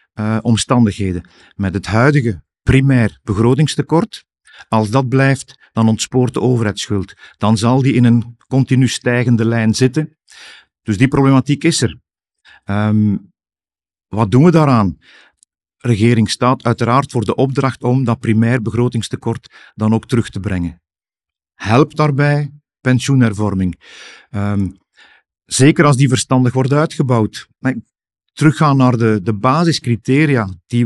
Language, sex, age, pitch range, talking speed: Dutch, male, 50-69, 110-135 Hz, 125 wpm